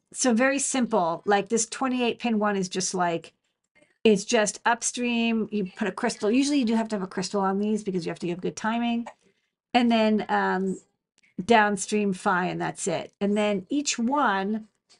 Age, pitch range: 40-59, 195-230 Hz